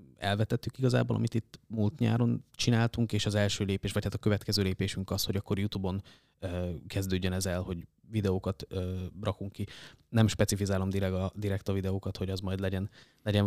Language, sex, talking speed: Hungarian, male, 175 wpm